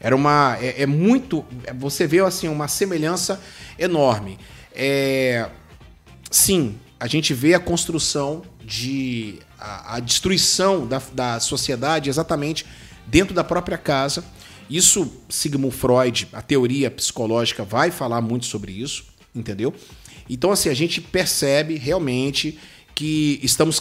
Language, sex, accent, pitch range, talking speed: Portuguese, male, Brazilian, 125-170 Hz, 125 wpm